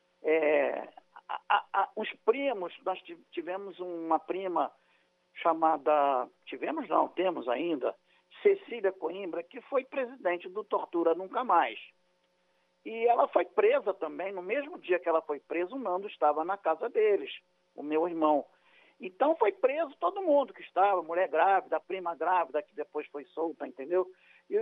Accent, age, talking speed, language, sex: Brazilian, 50-69, 140 wpm, Portuguese, male